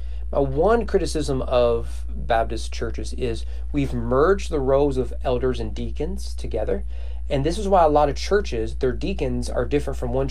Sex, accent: male, American